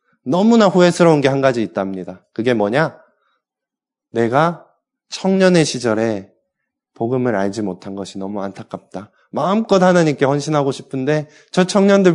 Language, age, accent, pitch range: Korean, 20-39, native, 115-170 Hz